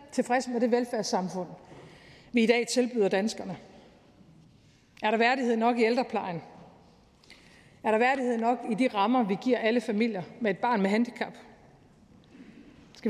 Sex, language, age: female, Danish, 50-69